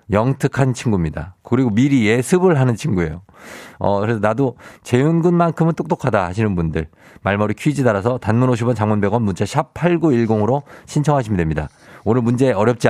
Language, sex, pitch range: Korean, male, 105-145 Hz